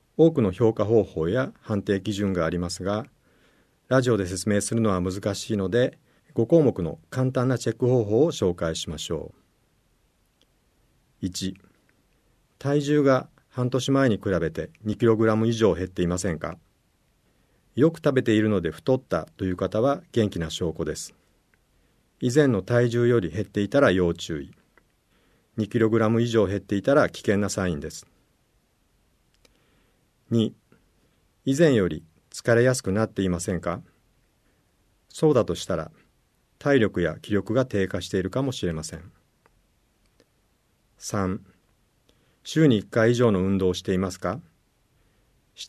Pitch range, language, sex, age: 95-125 Hz, Japanese, male, 50-69